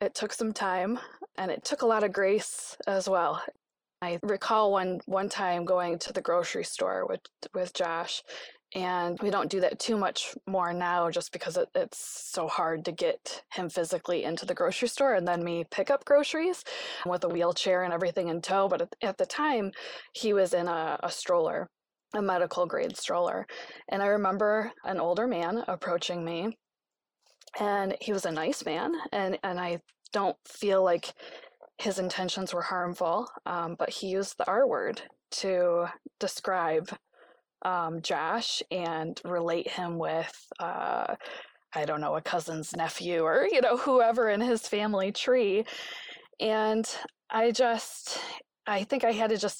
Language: English